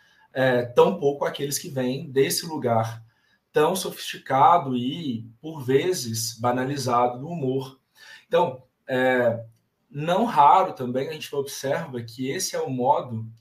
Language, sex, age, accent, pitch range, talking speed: Portuguese, male, 20-39, Brazilian, 120-165 Hz, 130 wpm